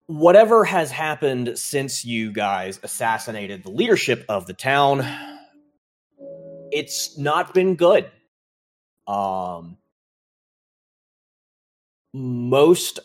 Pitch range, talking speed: 115-150 Hz, 85 wpm